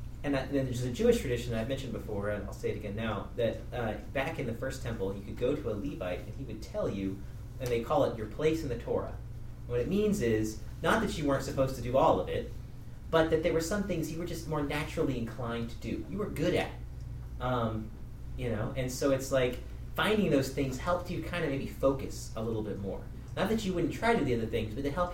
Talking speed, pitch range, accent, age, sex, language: 265 wpm, 115-150 Hz, American, 30-49, male, English